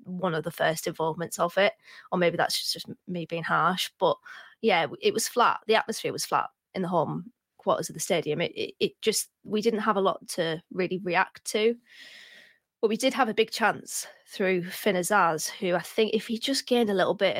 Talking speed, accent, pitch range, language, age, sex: 220 wpm, British, 180-225 Hz, English, 20-39, female